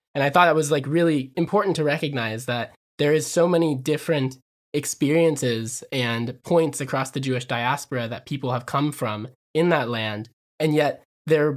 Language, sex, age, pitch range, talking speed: English, male, 20-39, 120-150 Hz, 175 wpm